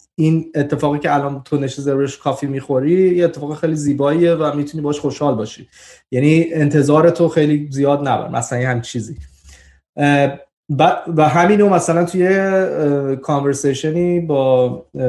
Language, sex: Persian, male